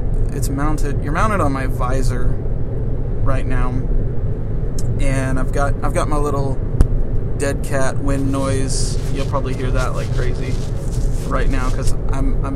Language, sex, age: English, male, 20-39